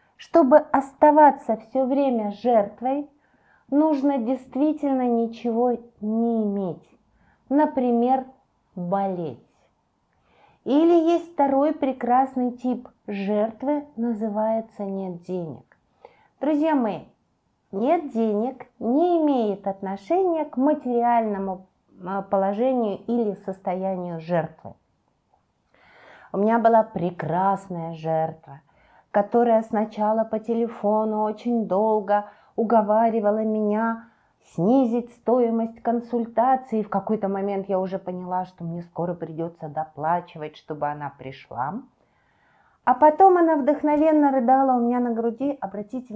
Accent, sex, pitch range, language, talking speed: native, female, 185-255 Hz, Russian, 95 wpm